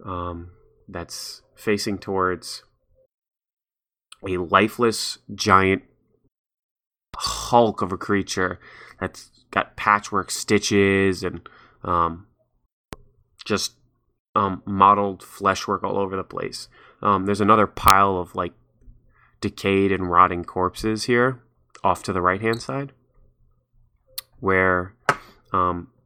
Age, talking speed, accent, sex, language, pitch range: 20-39, 100 wpm, American, male, English, 90-110 Hz